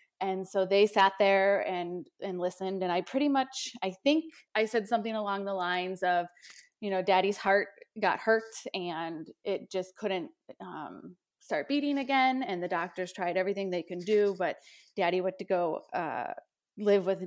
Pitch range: 180-225 Hz